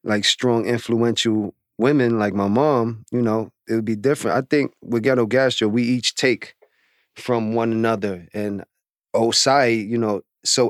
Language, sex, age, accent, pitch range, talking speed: English, male, 30-49, American, 110-130 Hz, 165 wpm